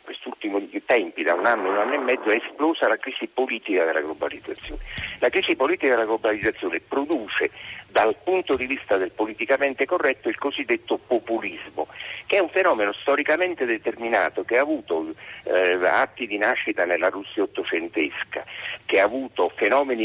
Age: 50-69